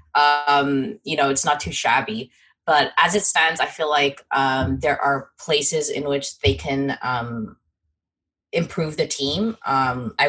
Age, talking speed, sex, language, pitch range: 20-39, 165 wpm, female, English, 135-175 Hz